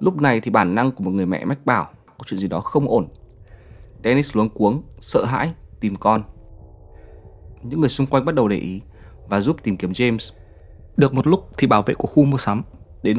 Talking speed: 220 wpm